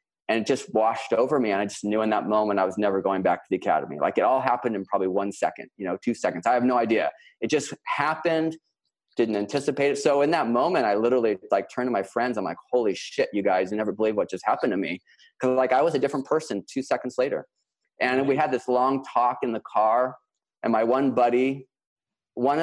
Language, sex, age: English, male, 30-49